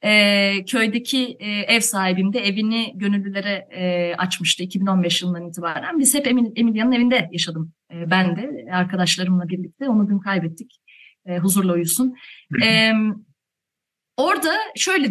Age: 30-49